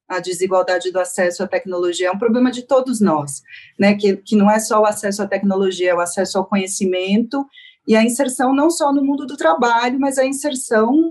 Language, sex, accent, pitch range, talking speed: Portuguese, female, Brazilian, 195-240 Hz, 210 wpm